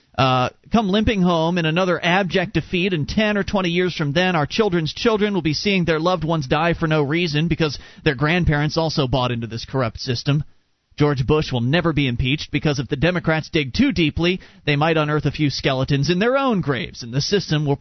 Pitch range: 135-175 Hz